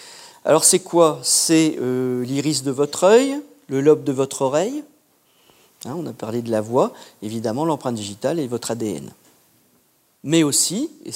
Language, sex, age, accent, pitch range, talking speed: French, male, 50-69, French, 130-180 Hz, 155 wpm